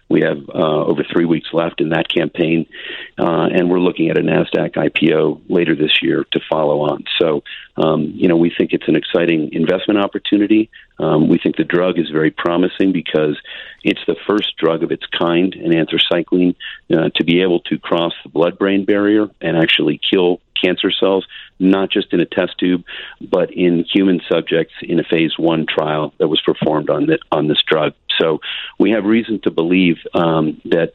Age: 40-59